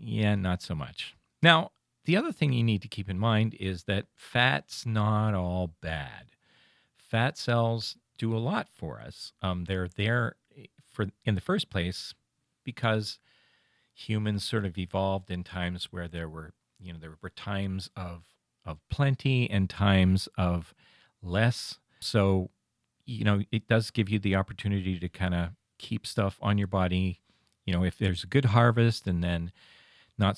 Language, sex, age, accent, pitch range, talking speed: English, male, 40-59, American, 90-115 Hz, 165 wpm